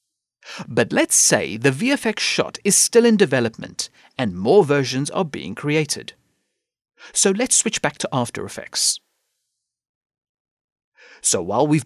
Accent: British